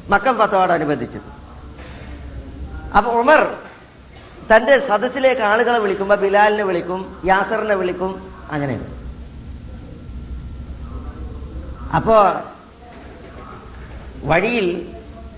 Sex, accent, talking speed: female, native, 60 wpm